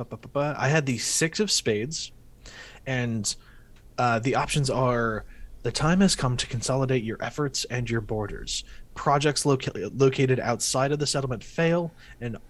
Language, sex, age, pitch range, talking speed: English, male, 20-39, 115-140 Hz, 150 wpm